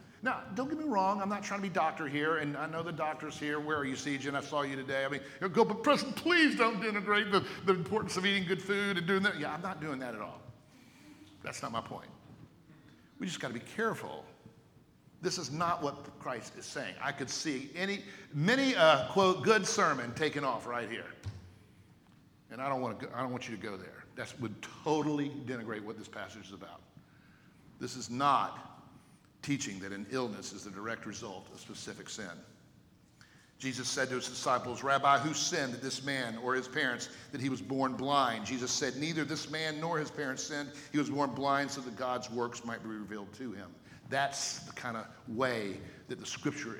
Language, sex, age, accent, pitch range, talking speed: English, male, 50-69, American, 125-185 Hz, 215 wpm